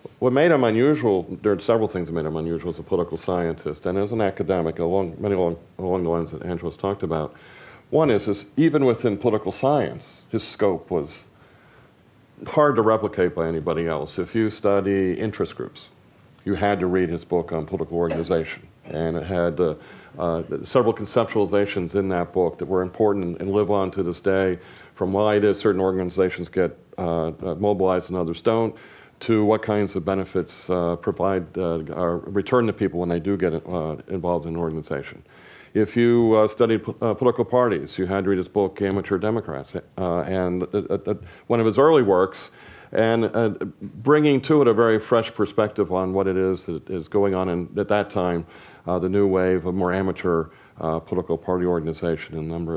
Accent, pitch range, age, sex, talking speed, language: American, 85-105 Hz, 50-69, male, 200 wpm, English